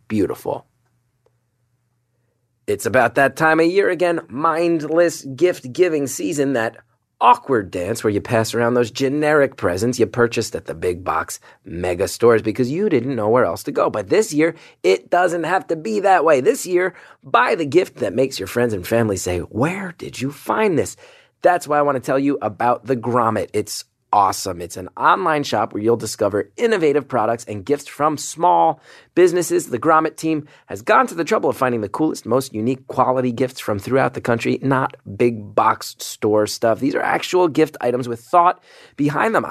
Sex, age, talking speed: male, 30-49, 190 wpm